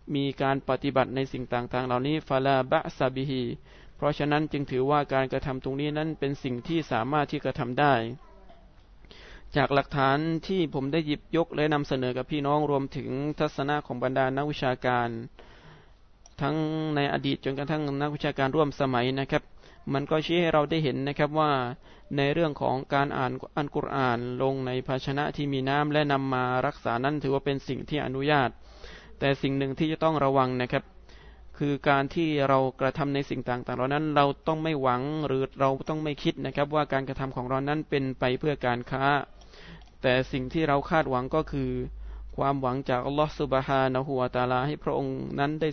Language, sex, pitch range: Thai, male, 130-150 Hz